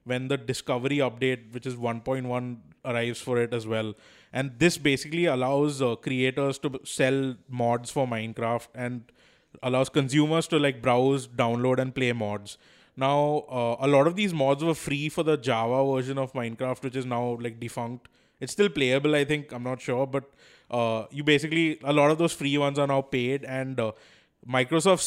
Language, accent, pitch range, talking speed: English, Indian, 120-140 Hz, 185 wpm